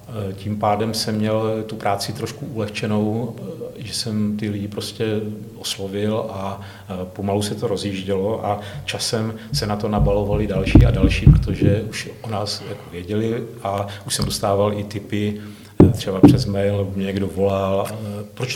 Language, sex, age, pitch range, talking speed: Czech, male, 40-59, 100-110 Hz, 145 wpm